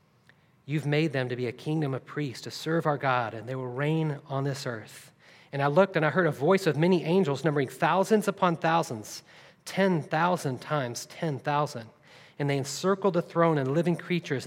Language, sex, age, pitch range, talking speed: English, male, 40-59, 130-165 Hz, 190 wpm